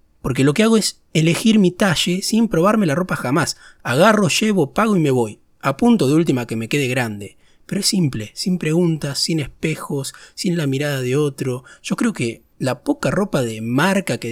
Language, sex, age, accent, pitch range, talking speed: Spanish, male, 20-39, Argentinian, 125-180 Hz, 200 wpm